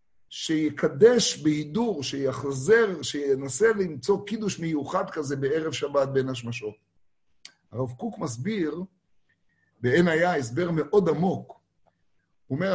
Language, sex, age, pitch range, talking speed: Hebrew, male, 50-69, 140-200 Hz, 105 wpm